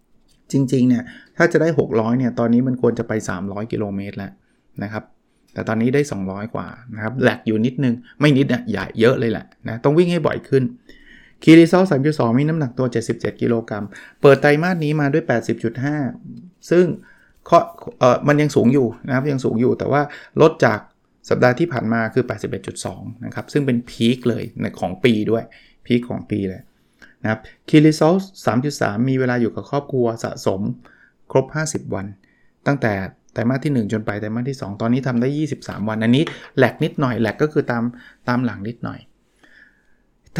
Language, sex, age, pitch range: Thai, male, 20-39, 110-140 Hz